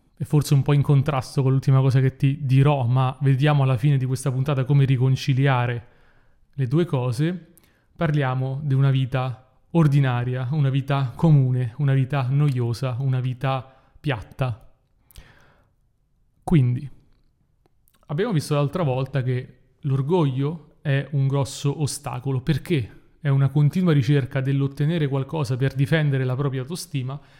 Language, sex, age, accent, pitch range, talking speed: Italian, male, 30-49, native, 130-150 Hz, 130 wpm